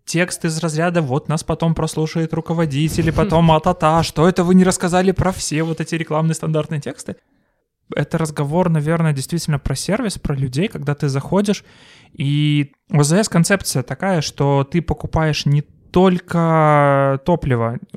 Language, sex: Russian, male